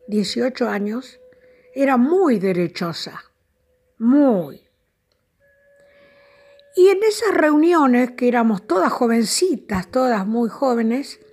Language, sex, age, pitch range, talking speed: Spanish, female, 50-69, 230-345 Hz, 90 wpm